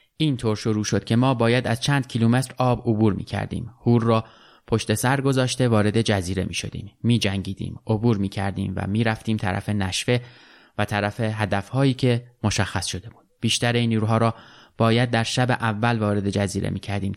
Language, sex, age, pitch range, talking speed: Persian, male, 20-39, 105-125 Hz, 180 wpm